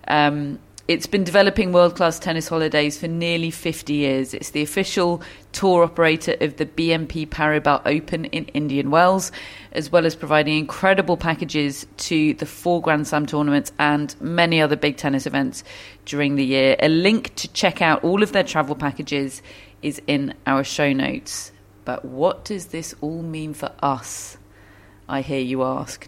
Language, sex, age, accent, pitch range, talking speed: English, female, 30-49, British, 140-175 Hz, 165 wpm